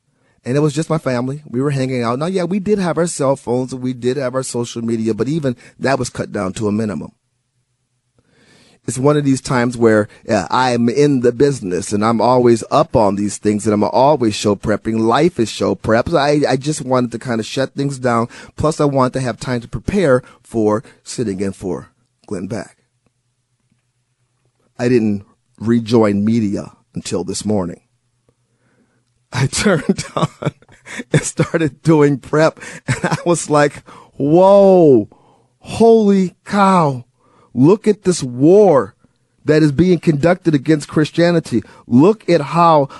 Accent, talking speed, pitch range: American, 165 wpm, 120-155 Hz